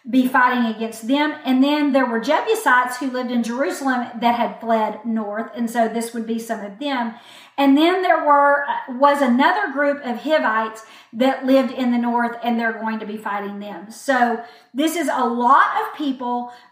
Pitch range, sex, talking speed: 235-285 Hz, female, 190 wpm